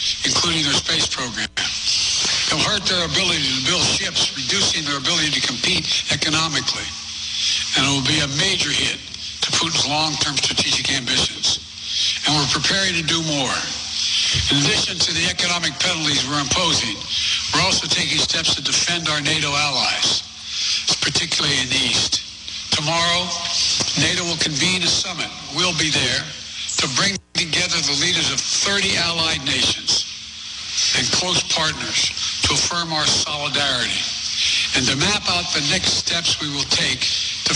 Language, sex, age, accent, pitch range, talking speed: English, male, 60-79, American, 130-170 Hz, 145 wpm